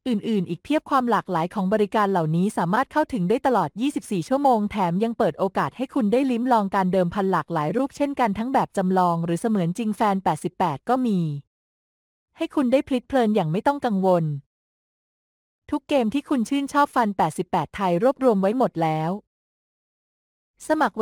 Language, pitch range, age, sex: English, 180-245 Hz, 20-39, female